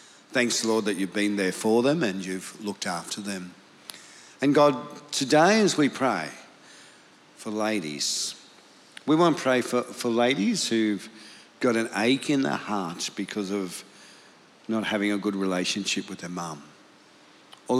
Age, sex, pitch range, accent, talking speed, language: 50-69, male, 95-120 Hz, Australian, 155 wpm, English